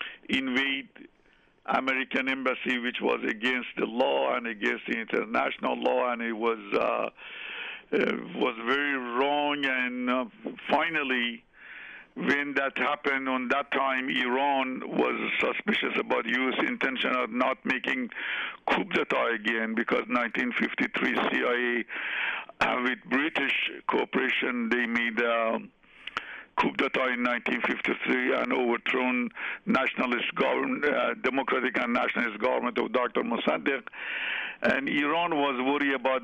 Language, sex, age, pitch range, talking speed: English, male, 60-79, 120-135 Hz, 120 wpm